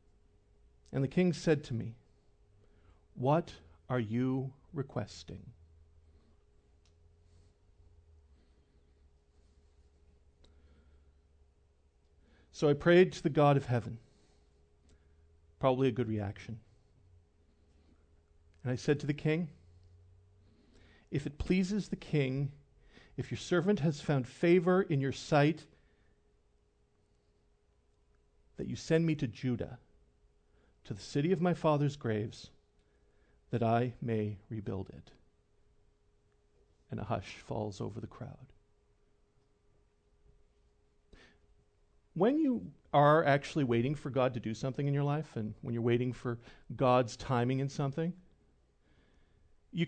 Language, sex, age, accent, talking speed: English, male, 50-69, American, 110 wpm